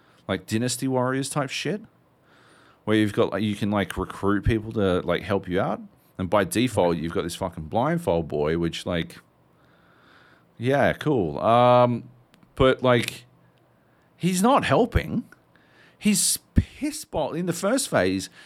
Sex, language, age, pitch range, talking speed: male, English, 40-59, 105-145 Hz, 145 wpm